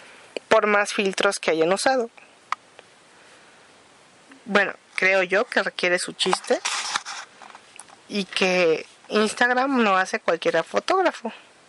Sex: female